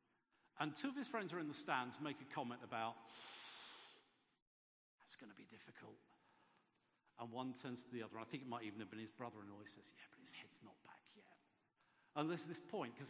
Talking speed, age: 220 wpm, 50-69